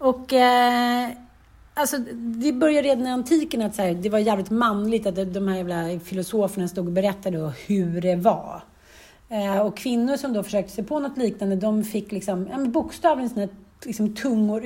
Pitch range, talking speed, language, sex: 195-245 Hz, 190 wpm, Swedish, female